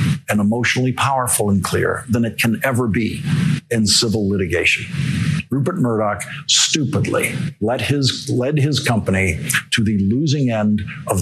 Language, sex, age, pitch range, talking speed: English, male, 50-69, 110-145 Hz, 140 wpm